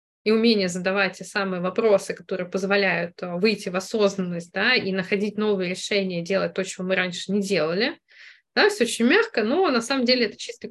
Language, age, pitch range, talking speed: Russian, 20-39, 195-240 Hz, 185 wpm